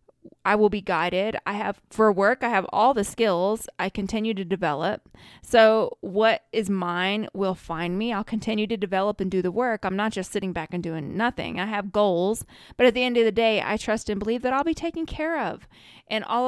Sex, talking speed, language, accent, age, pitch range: female, 225 wpm, English, American, 20-39, 190-225 Hz